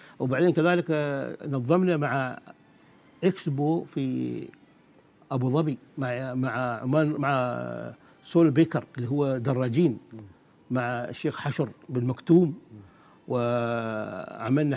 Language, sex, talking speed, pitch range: Arabic, male, 95 wpm, 125-155 Hz